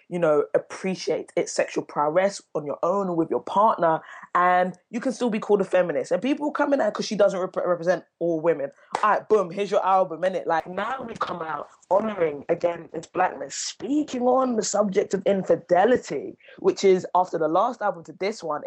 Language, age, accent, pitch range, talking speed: English, 20-39, British, 165-210 Hz, 205 wpm